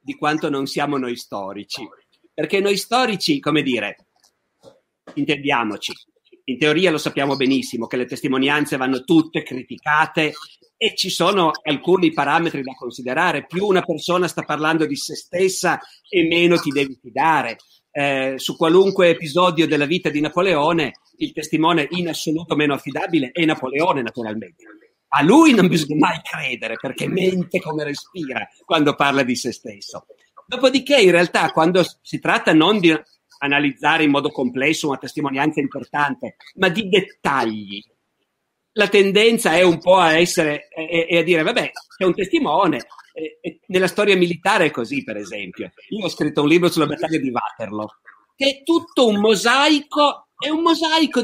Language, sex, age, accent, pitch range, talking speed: Italian, male, 50-69, native, 145-195 Hz, 155 wpm